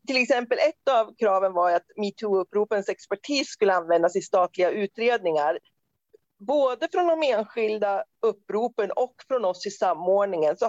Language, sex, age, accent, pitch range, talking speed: Swedish, female, 40-59, native, 190-260 Hz, 140 wpm